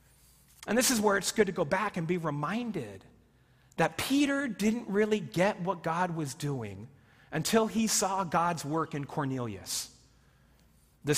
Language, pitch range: English, 150-220 Hz